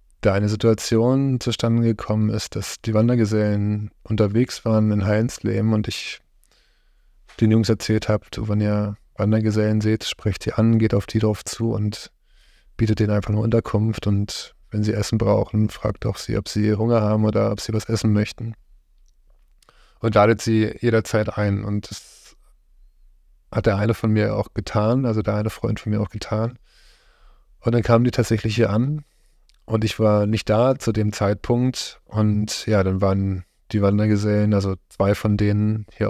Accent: German